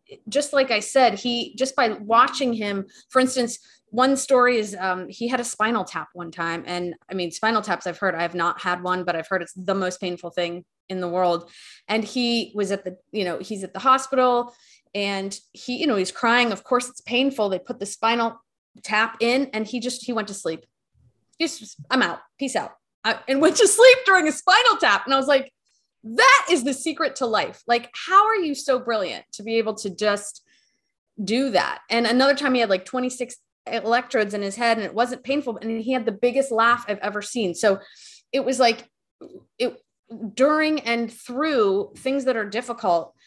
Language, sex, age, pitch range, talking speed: English, female, 20-39, 195-255 Hz, 210 wpm